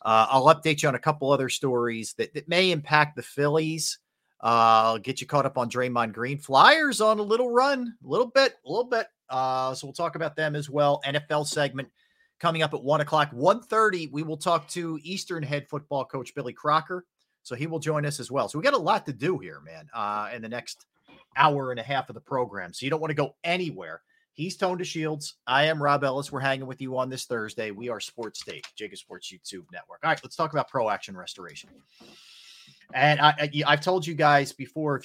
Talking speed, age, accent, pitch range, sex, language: 230 wpm, 40-59, American, 120-160 Hz, male, English